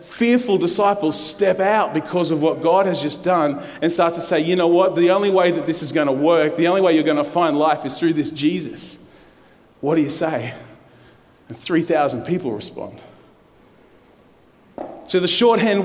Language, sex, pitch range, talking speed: English, male, 175-210 Hz, 190 wpm